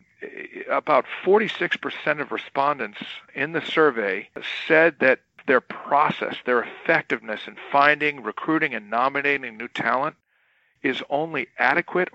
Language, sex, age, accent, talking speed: English, male, 50-69, American, 115 wpm